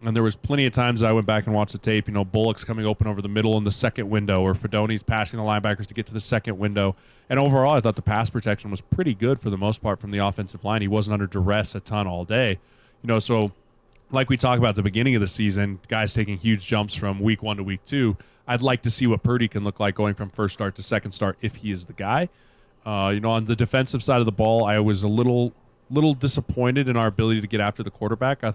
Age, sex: 20-39, male